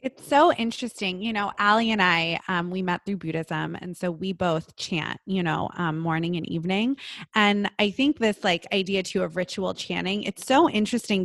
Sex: female